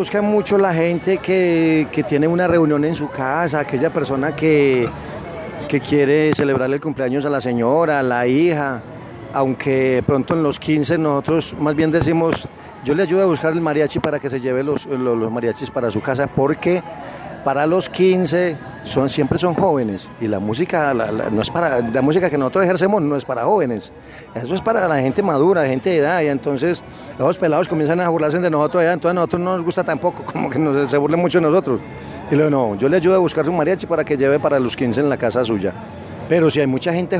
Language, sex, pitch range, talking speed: Spanish, male, 115-155 Hz, 220 wpm